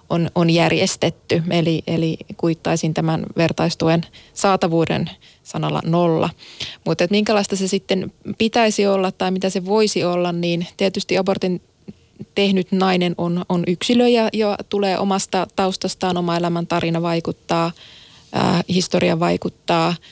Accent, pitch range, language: native, 170-190 Hz, Finnish